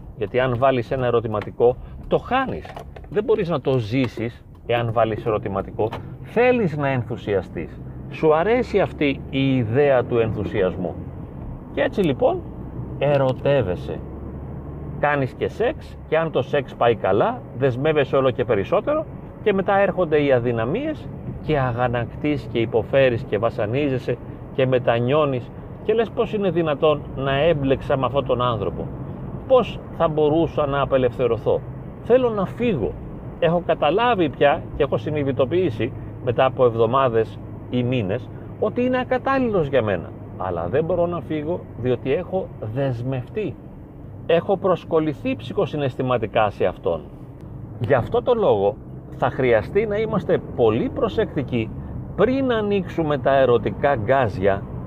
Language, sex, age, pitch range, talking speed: Greek, male, 40-59, 120-170 Hz, 130 wpm